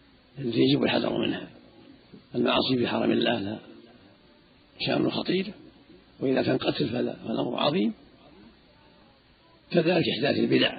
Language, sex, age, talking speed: Arabic, male, 50-69, 95 wpm